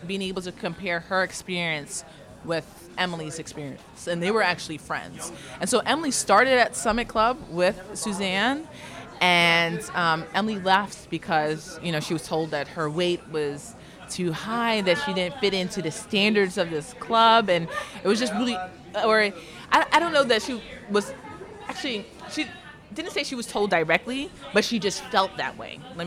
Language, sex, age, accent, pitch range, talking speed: English, female, 20-39, American, 160-210 Hz, 175 wpm